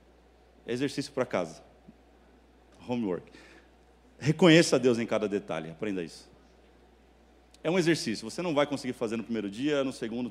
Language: Portuguese